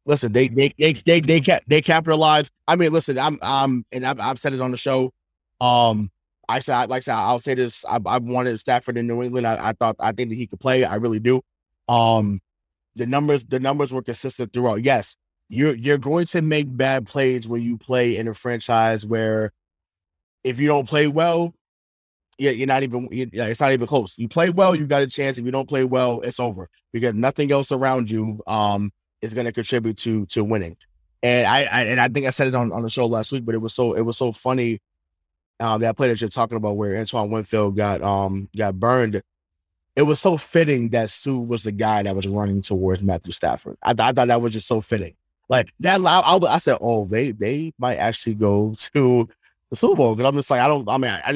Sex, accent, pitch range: male, American, 110-135 Hz